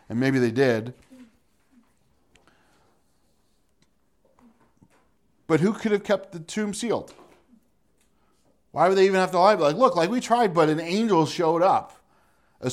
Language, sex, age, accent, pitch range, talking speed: English, male, 40-59, American, 115-160 Hz, 140 wpm